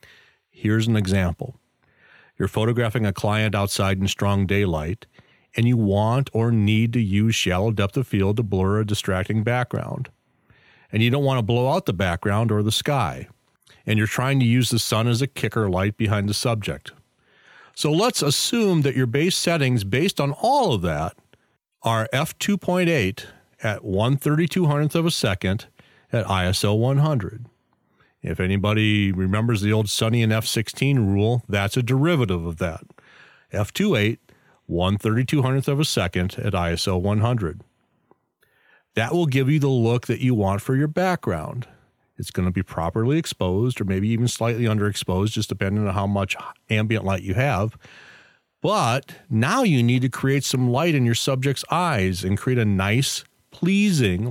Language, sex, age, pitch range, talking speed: English, male, 40-59, 100-135 Hz, 160 wpm